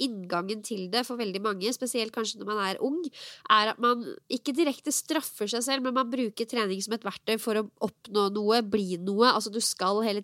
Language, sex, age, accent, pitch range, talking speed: English, female, 20-39, Swedish, 205-250 Hz, 230 wpm